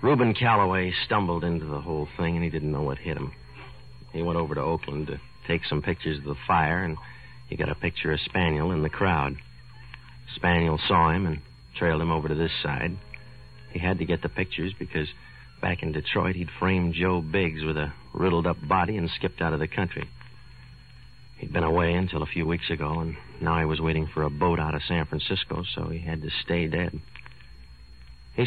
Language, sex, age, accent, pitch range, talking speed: English, male, 60-79, American, 70-90 Hz, 205 wpm